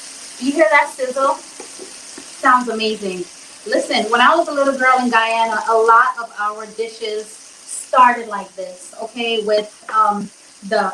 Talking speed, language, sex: 150 wpm, English, female